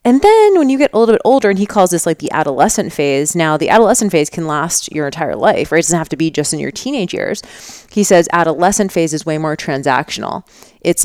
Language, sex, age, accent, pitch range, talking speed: English, female, 30-49, American, 160-205 Hz, 250 wpm